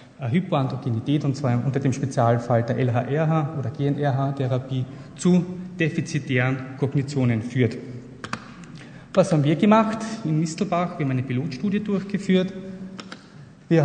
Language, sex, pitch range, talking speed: German, male, 135-165 Hz, 115 wpm